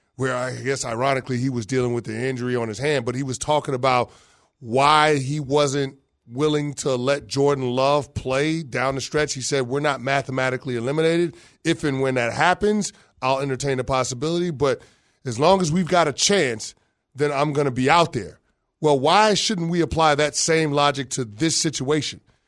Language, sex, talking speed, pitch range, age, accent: English, male, 190 wpm, 135-180 Hz, 30-49, American